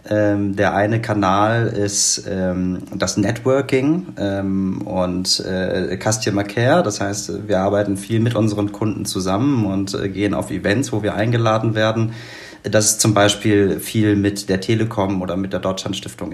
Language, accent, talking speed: German, German, 140 wpm